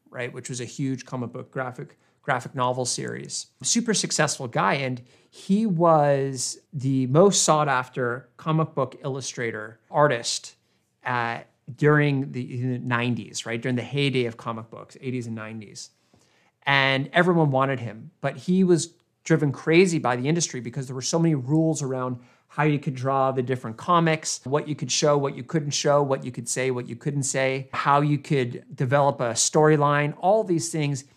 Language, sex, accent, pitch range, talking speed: English, male, American, 125-150 Hz, 175 wpm